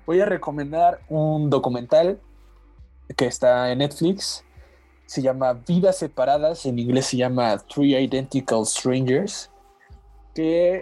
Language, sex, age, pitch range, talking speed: Spanish, male, 30-49, 115-150 Hz, 115 wpm